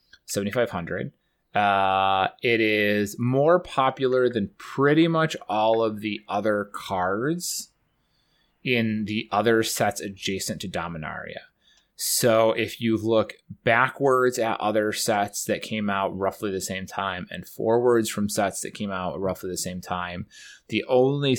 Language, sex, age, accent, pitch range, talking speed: English, male, 20-39, American, 95-125 Hz, 135 wpm